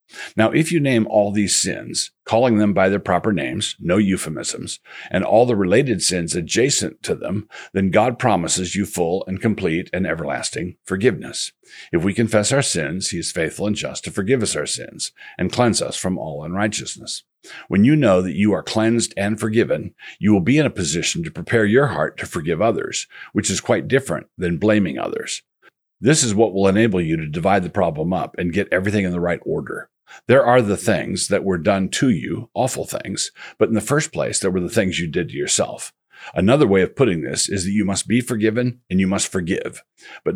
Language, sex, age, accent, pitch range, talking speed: English, male, 50-69, American, 95-110 Hz, 210 wpm